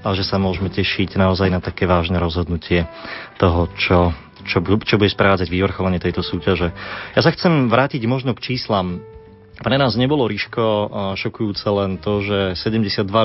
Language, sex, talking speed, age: Slovak, male, 160 wpm, 30-49